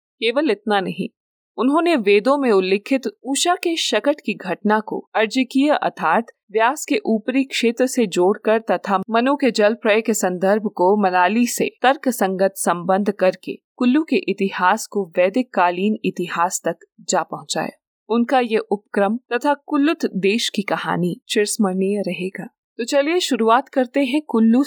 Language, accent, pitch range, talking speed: Hindi, native, 195-255 Hz, 150 wpm